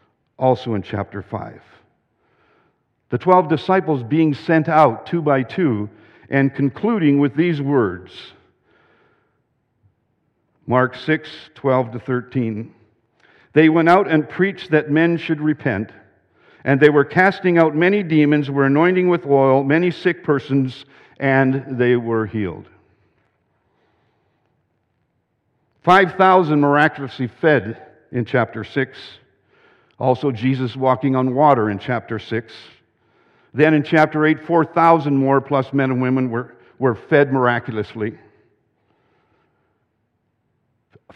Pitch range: 120-155 Hz